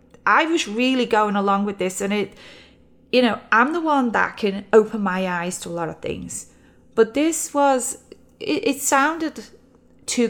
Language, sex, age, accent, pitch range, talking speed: English, female, 30-49, British, 195-250 Hz, 180 wpm